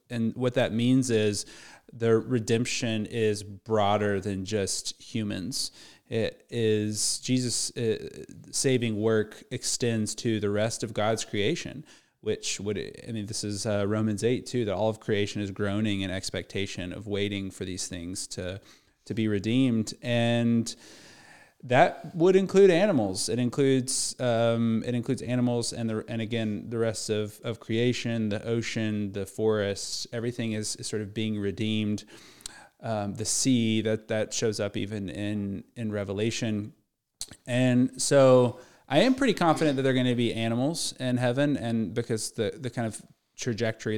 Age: 30-49